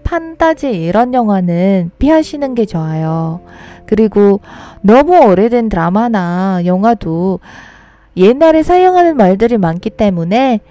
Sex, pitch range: female, 190-275 Hz